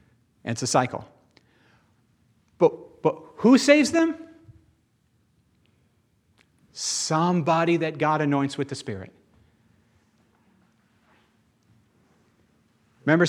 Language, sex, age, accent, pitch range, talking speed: English, male, 40-59, American, 130-180 Hz, 70 wpm